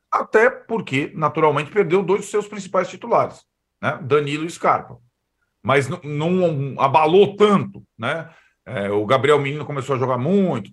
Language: Portuguese